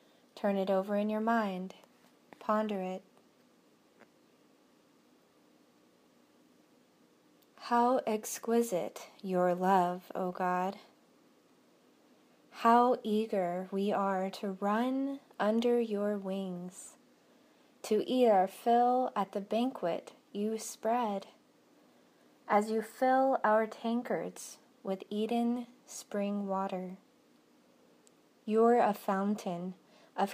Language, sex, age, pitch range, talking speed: English, female, 20-39, 195-240 Hz, 90 wpm